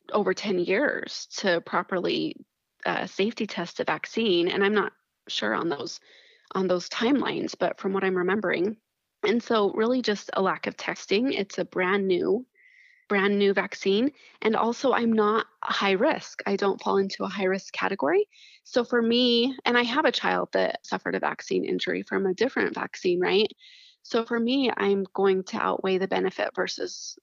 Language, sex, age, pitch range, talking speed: English, female, 20-39, 195-325 Hz, 180 wpm